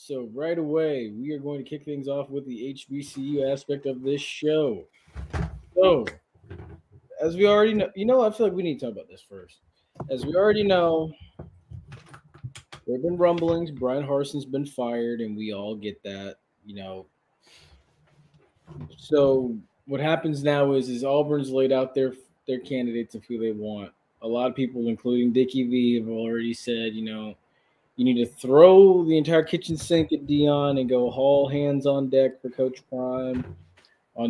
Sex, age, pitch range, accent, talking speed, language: male, 20-39, 120-150 Hz, American, 180 wpm, English